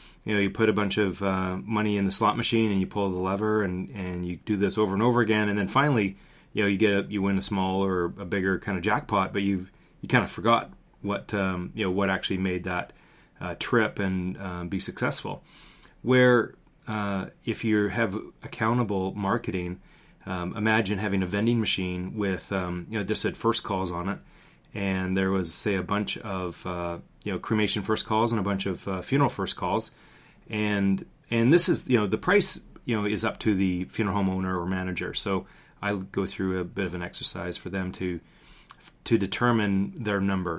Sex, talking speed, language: male, 210 wpm, English